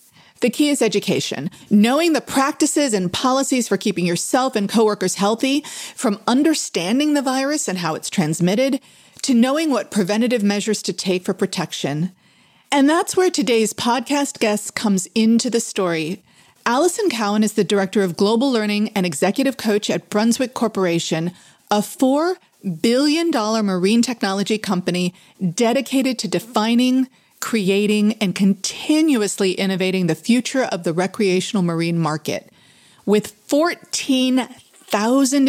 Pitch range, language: 185-255 Hz, English